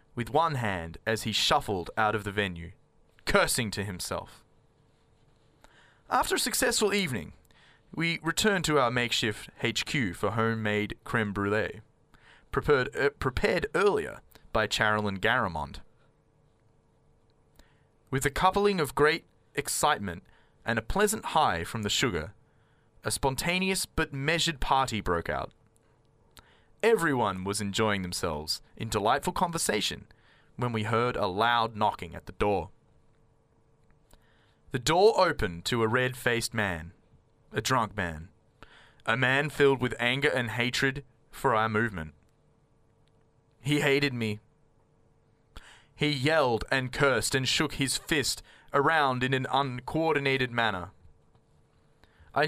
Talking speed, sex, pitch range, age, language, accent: 120 wpm, male, 105-145 Hz, 20-39, English, Australian